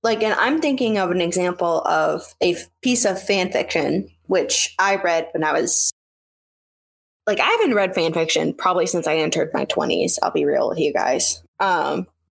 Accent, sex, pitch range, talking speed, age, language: American, female, 165-210 Hz, 185 wpm, 10-29, English